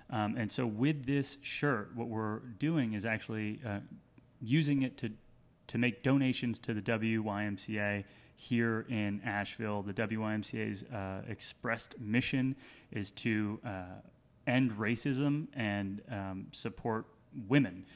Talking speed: 125 wpm